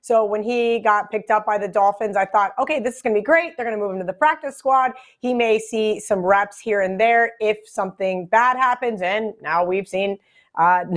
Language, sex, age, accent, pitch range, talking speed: English, female, 30-49, American, 200-240 Hz, 240 wpm